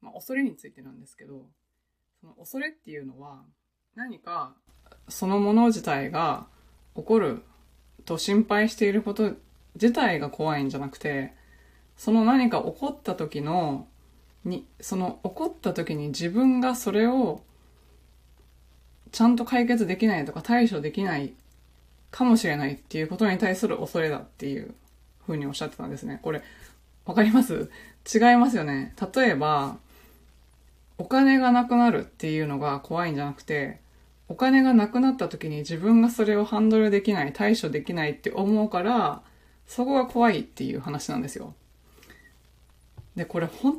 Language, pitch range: Japanese, 145-230 Hz